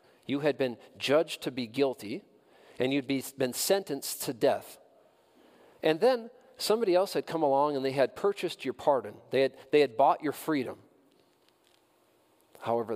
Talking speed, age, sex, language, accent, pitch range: 160 wpm, 40-59, male, English, American, 110-165 Hz